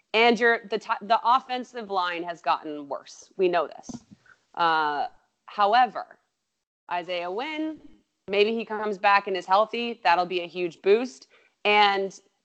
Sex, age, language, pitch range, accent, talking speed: female, 30-49, English, 165-215 Hz, American, 140 wpm